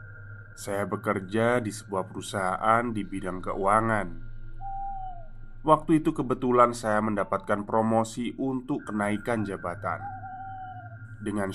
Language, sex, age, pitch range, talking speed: Indonesian, male, 20-39, 105-120 Hz, 95 wpm